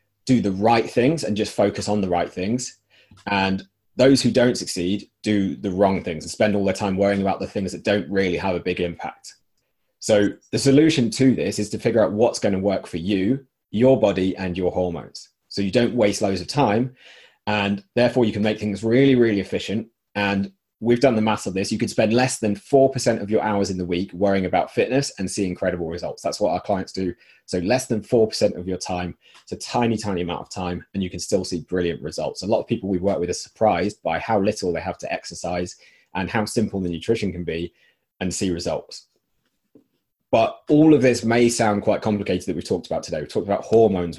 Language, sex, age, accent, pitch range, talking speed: English, male, 30-49, British, 95-115 Hz, 225 wpm